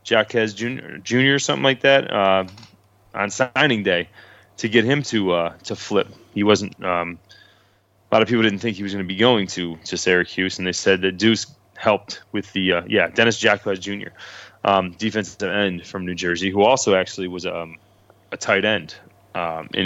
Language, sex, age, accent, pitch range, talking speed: English, male, 20-39, American, 95-110 Hz, 200 wpm